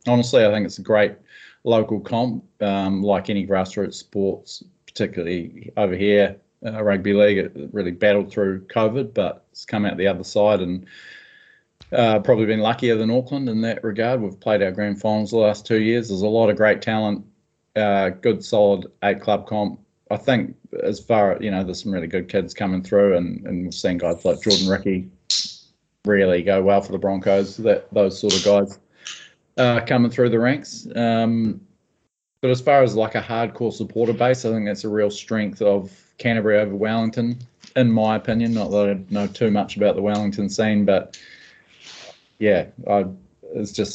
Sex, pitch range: male, 95-110 Hz